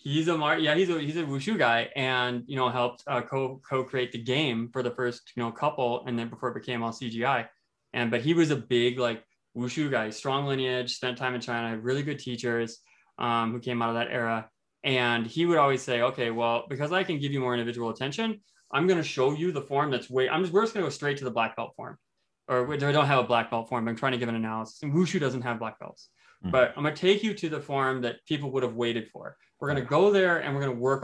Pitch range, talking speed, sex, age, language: 120-140 Hz, 270 wpm, male, 20-39, English